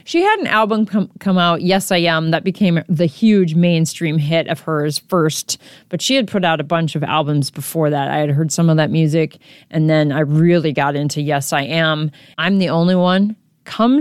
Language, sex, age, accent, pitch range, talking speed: English, female, 30-49, American, 160-220 Hz, 215 wpm